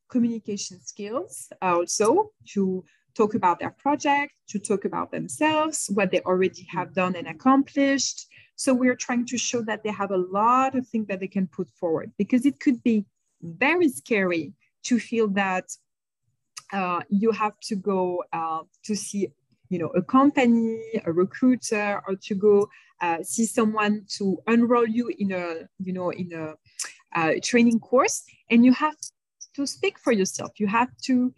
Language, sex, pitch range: Japanese, female, 185-250 Hz